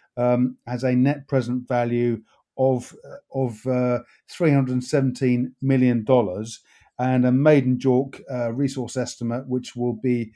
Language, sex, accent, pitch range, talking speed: English, male, British, 125-135 Hz, 125 wpm